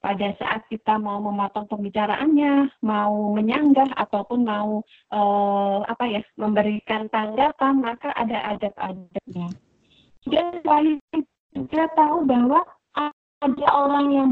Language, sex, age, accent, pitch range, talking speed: Indonesian, female, 30-49, native, 210-275 Hz, 105 wpm